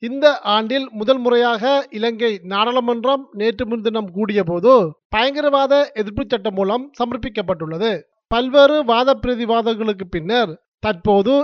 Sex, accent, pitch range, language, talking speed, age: male, native, 210-265 Hz, Tamil, 105 wpm, 30-49